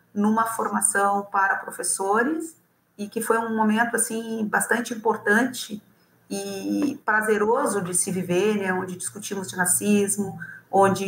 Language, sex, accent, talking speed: Portuguese, female, Brazilian, 125 wpm